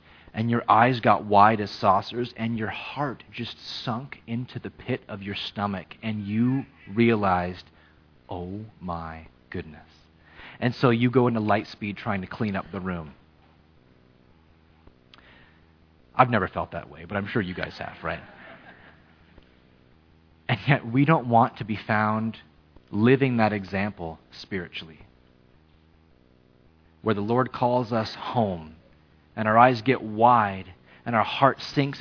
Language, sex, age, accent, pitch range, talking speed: English, male, 30-49, American, 80-125 Hz, 140 wpm